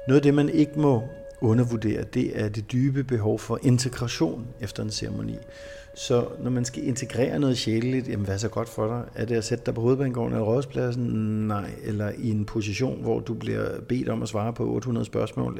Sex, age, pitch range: male, 50-69, 105-130 Hz